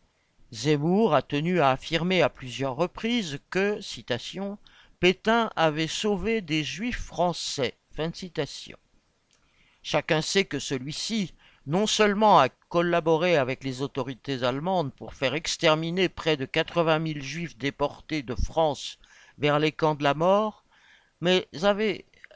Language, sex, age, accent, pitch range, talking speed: French, male, 50-69, French, 155-195 Hz, 140 wpm